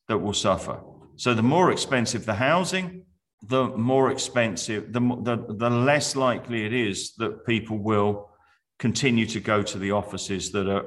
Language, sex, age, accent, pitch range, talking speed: English, male, 40-59, British, 105-130 Hz, 165 wpm